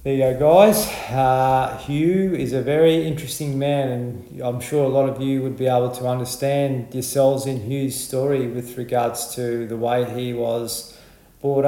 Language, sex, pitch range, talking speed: English, male, 115-135 Hz, 180 wpm